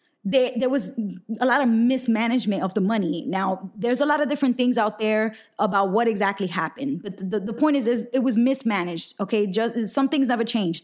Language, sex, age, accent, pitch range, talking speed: English, female, 10-29, American, 195-235 Hz, 215 wpm